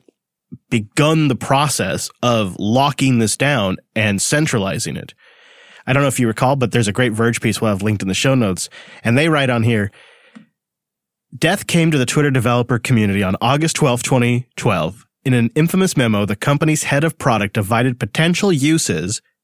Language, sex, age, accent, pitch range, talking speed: English, male, 30-49, American, 115-155 Hz, 175 wpm